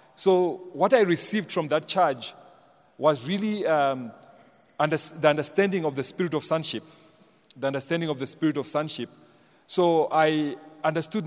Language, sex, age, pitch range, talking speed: English, male, 40-59, 145-180 Hz, 150 wpm